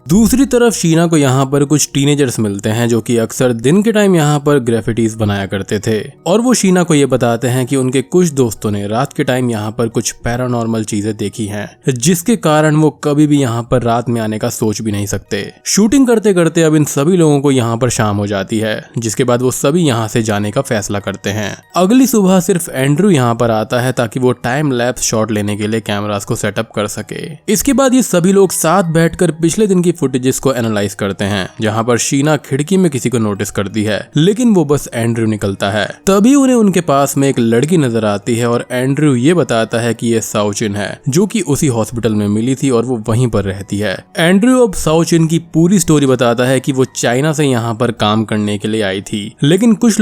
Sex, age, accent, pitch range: male, 20-39, native, 110-160 Hz